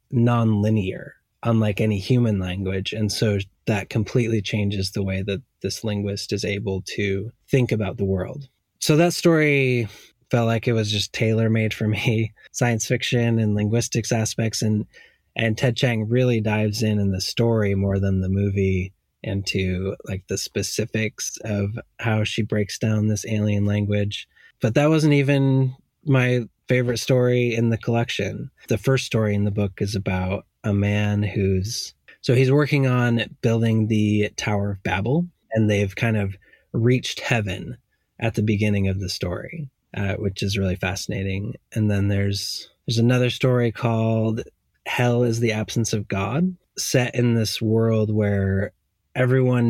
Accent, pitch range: American, 100-120 Hz